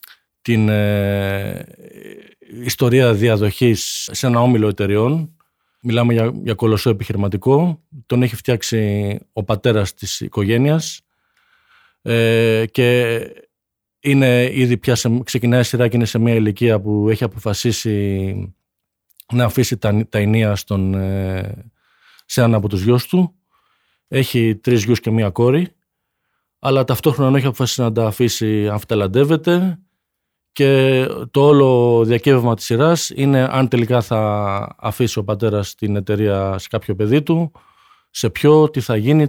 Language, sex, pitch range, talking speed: Greek, male, 110-130 Hz, 135 wpm